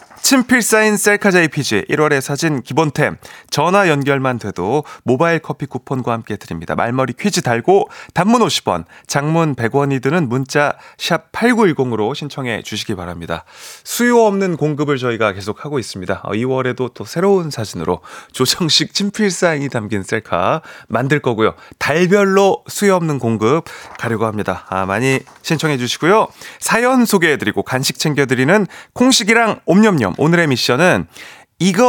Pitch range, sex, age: 120-190 Hz, male, 30-49